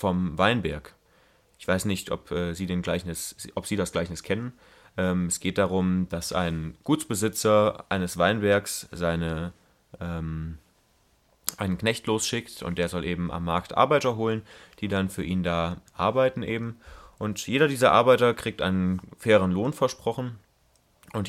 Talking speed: 150 wpm